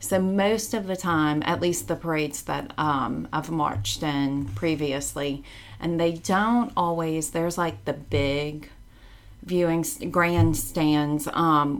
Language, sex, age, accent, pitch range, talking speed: English, female, 30-49, American, 130-165 Hz, 130 wpm